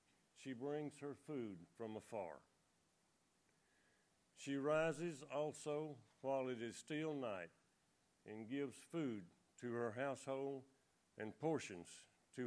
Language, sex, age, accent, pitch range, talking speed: English, male, 50-69, American, 125-160 Hz, 110 wpm